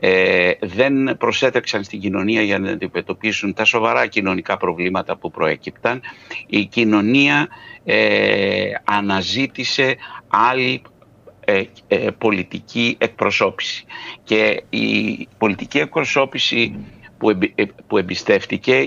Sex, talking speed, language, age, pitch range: male, 90 wpm, Greek, 60-79, 100-145 Hz